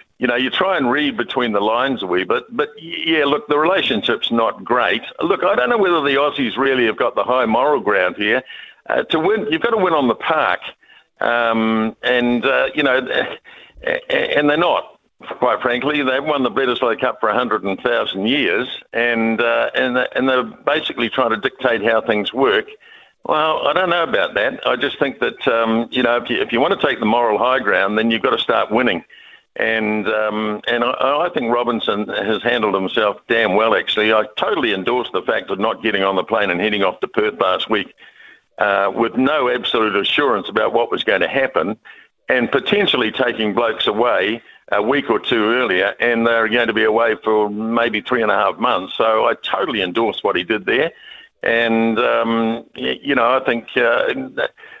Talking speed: 205 wpm